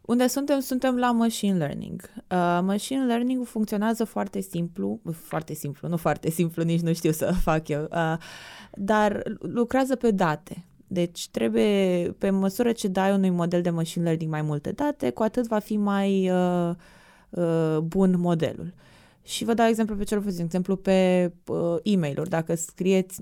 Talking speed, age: 150 wpm, 20-39